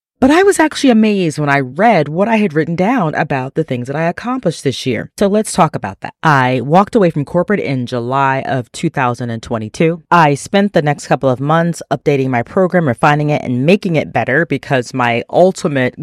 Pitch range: 135-180 Hz